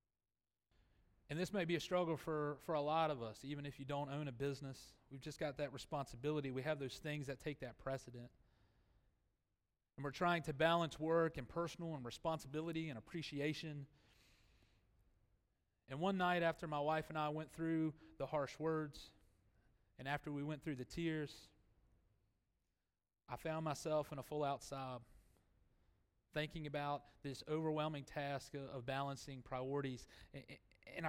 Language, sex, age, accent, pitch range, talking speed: English, male, 30-49, American, 105-150 Hz, 155 wpm